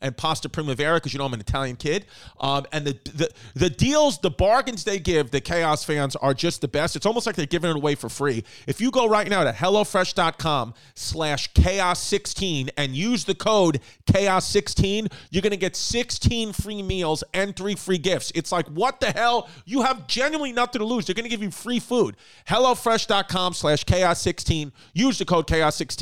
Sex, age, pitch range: male, 40-59, 150-195 Hz